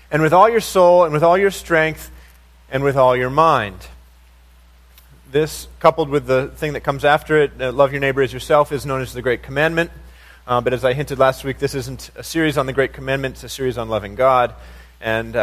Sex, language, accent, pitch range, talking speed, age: male, English, American, 110-160 Hz, 220 wpm, 30-49